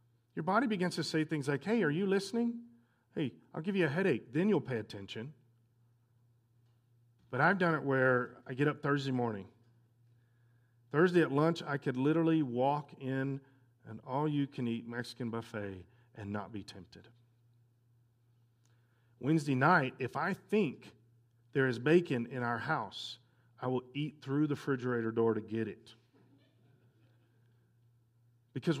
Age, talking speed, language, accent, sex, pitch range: 40-59, 145 wpm, English, American, male, 120-165 Hz